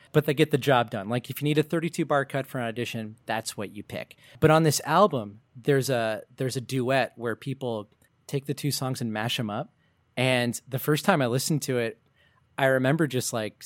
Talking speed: 225 wpm